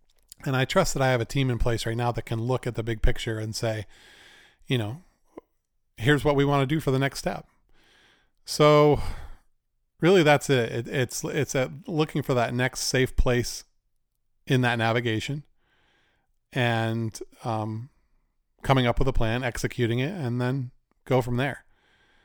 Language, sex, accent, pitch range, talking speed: English, male, American, 115-130 Hz, 175 wpm